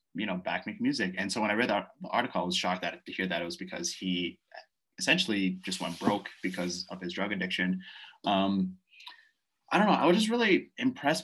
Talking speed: 220 wpm